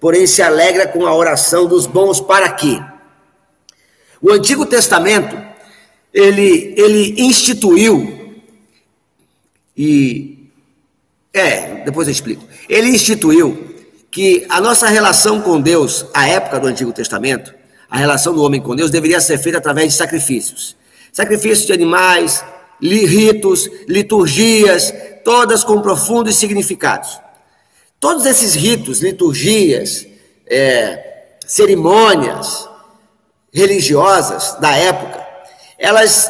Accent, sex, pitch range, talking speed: Brazilian, male, 190-265 Hz, 105 wpm